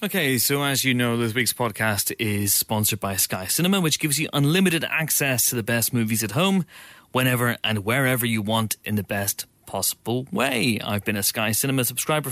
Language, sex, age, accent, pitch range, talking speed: English, male, 30-49, British, 110-150 Hz, 195 wpm